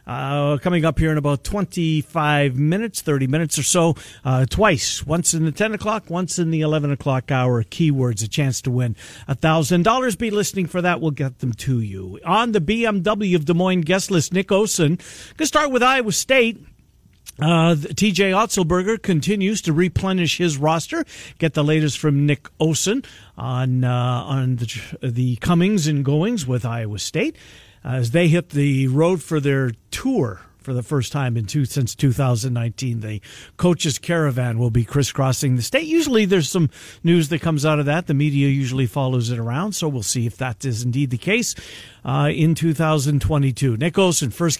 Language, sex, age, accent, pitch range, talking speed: English, male, 50-69, American, 130-180 Hz, 180 wpm